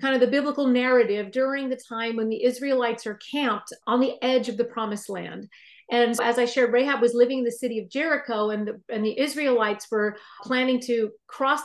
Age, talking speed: 40-59, 205 wpm